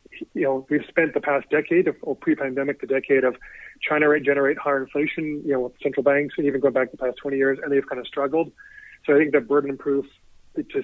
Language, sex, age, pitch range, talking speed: English, male, 30-49, 135-155 Hz, 245 wpm